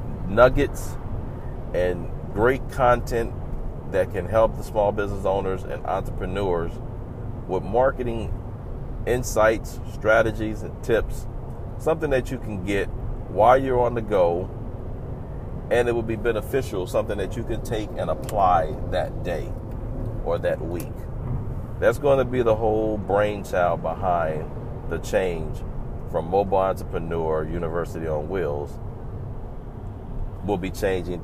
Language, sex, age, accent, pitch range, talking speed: English, male, 40-59, American, 95-115 Hz, 125 wpm